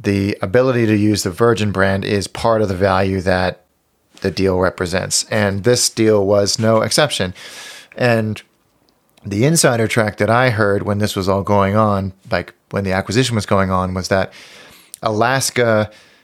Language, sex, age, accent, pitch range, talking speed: English, male, 30-49, American, 95-115 Hz, 165 wpm